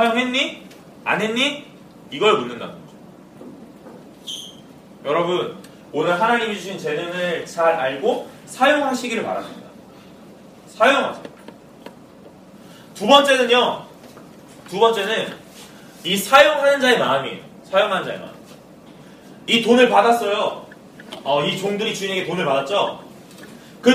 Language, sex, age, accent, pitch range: Korean, male, 30-49, native, 195-255 Hz